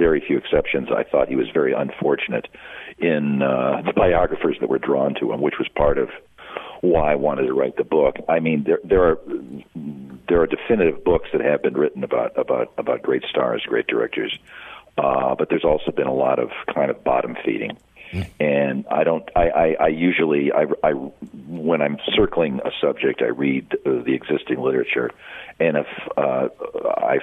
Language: English